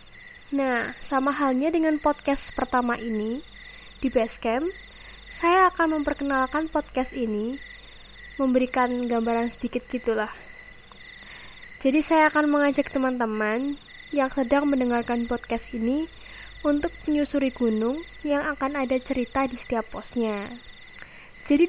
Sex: female